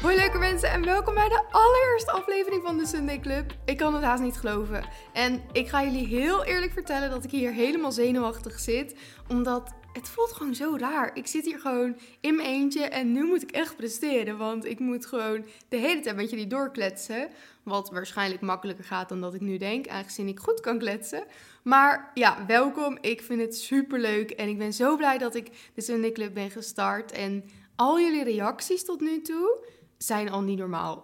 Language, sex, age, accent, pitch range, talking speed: Dutch, female, 20-39, Dutch, 215-285 Hz, 205 wpm